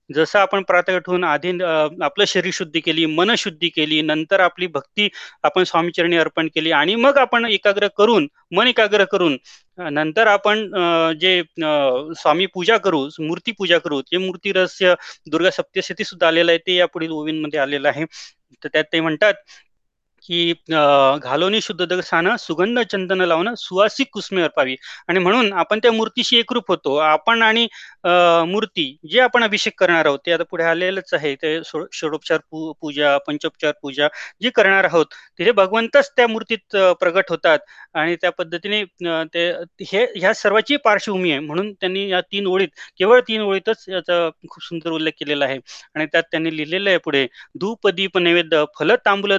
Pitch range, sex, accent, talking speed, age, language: 160-200 Hz, male, native, 115 wpm, 30-49, Marathi